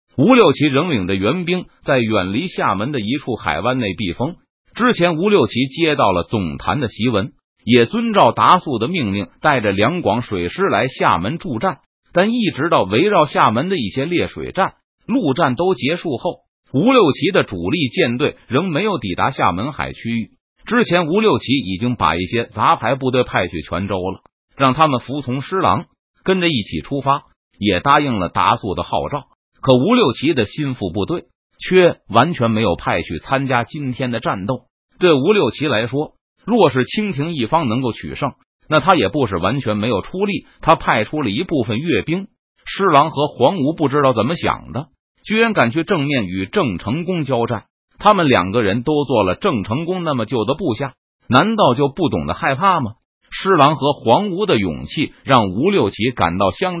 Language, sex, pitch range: Chinese, male, 115-165 Hz